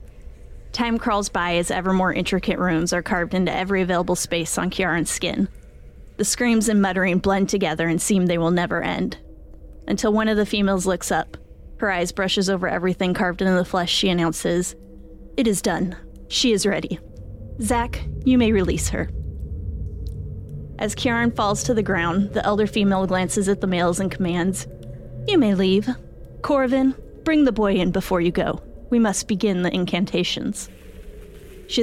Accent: American